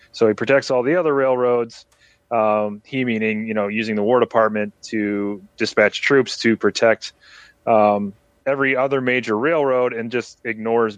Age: 30-49